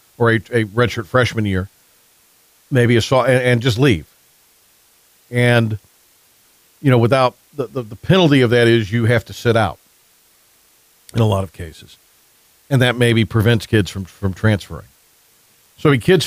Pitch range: 110-135 Hz